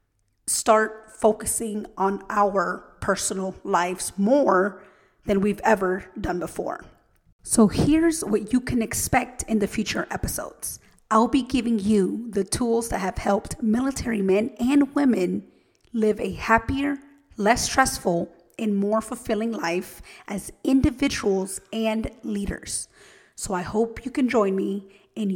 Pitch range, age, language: 200-240 Hz, 30-49, English